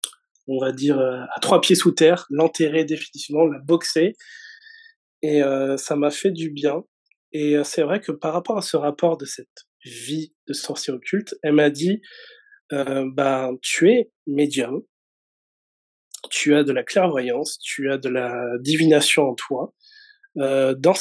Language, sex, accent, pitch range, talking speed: French, male, French, 135-170 Hz, 165 wpm